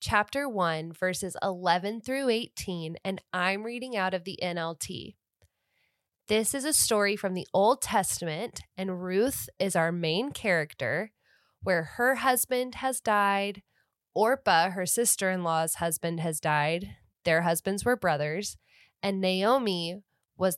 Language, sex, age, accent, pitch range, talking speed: English, female, 10-29, American, 170-210 Hz, 130 wpm